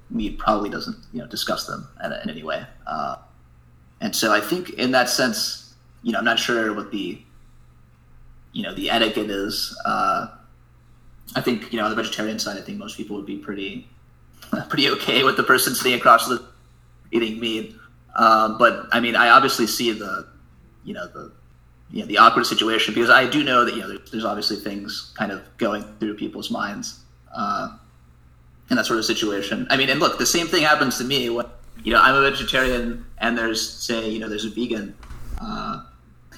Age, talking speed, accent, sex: 20-39, 200 wpm, American, male